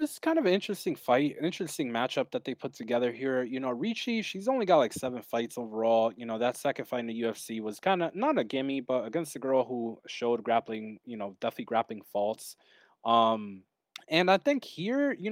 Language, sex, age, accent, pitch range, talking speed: English, male, 20-39, American, 115-165 Hz, 225 wpm